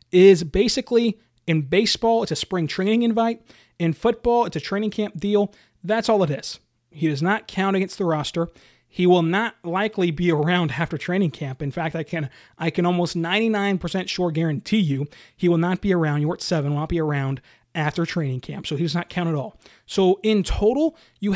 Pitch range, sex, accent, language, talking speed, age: 160-205 Hz, male, American, English, 200 wpm, 30-49